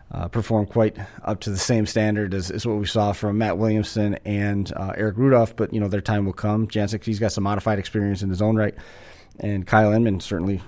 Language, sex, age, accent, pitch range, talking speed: English, male, 30-49, American, 100-115 Hz, 230 wpm